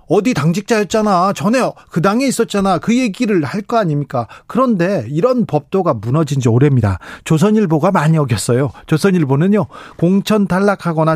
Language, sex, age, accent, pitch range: Korean, male, 40-59, native, 145-190 Hz